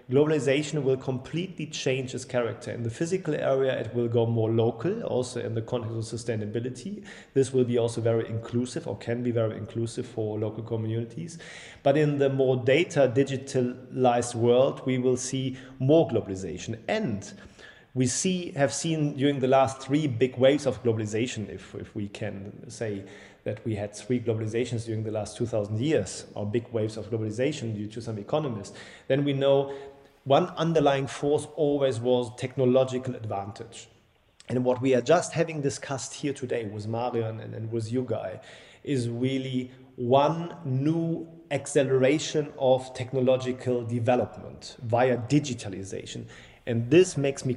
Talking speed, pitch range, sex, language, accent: 155 wpm, 115-140 Hz, male, English, German